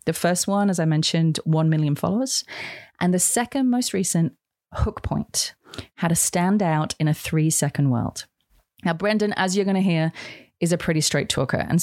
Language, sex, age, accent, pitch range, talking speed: English, female, 30-49, Australian, 155-195 Hz, 185 wpm